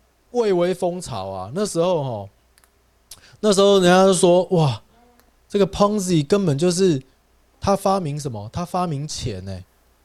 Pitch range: 130-195 Hz